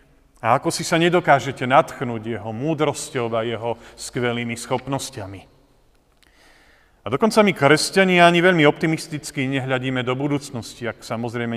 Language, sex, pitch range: Slovak, male, 115-145 Hz